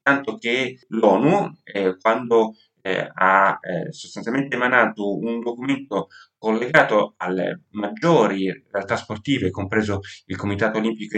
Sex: male